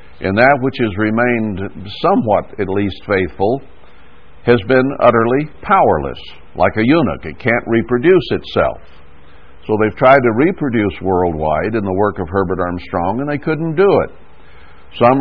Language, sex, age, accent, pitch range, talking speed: English, male, 60-79, American, 95-135 Hz, 150 wpm